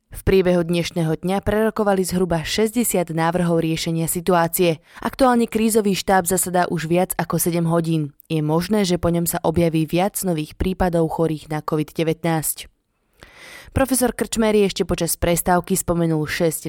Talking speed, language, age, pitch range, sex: 140 wpm, Slovak, 20-39, 165-190 Hz, female